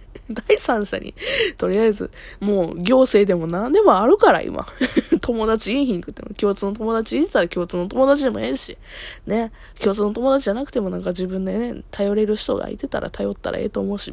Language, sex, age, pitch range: Japanese, female, 20-39, 190-270 Hz